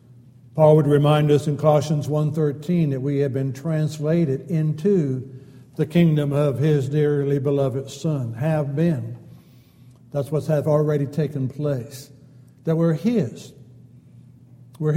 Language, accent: English, American